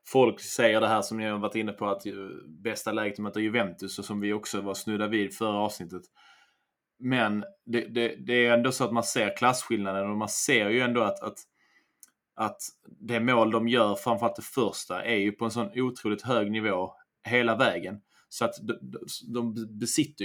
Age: 20-39